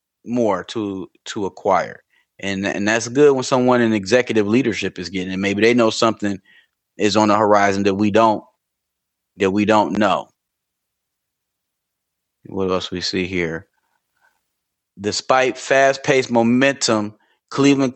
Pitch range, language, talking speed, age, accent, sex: 100-120 Hz, English, 135 wpm, 30-49, American, male